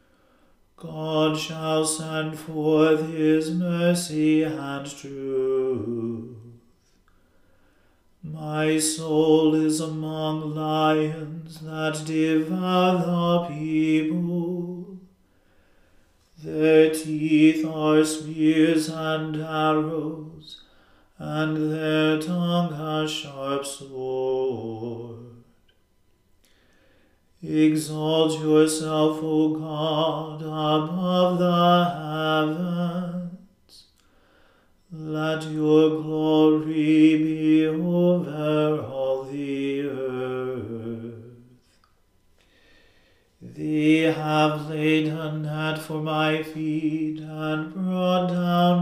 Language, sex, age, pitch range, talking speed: English, male, 40-59, 155-160 Hz, 70 wpm